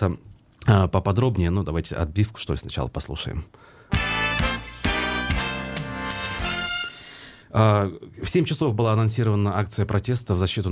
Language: Russian